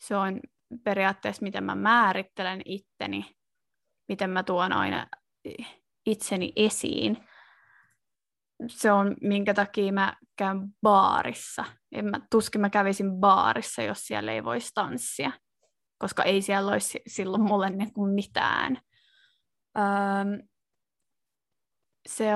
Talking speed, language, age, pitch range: 105 wpm, Finnish, 20-39, 200-230 Hz